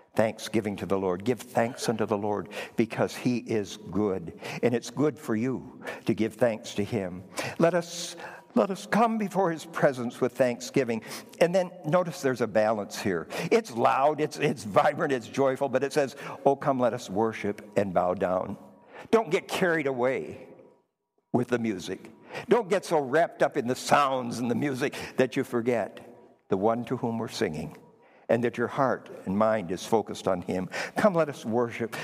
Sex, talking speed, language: male, 185 wpm, English